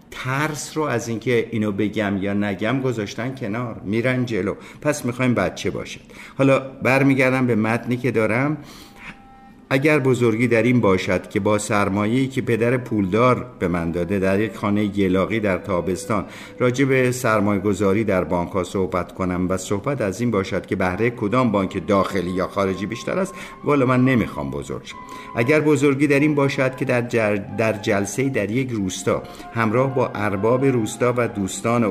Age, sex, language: 50-69, male, Persian